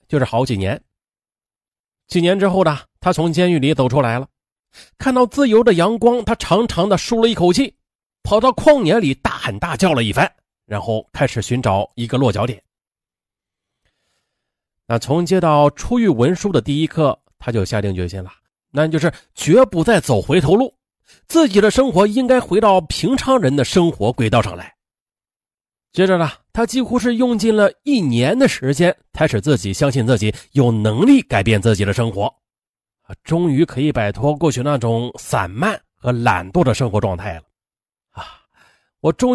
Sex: male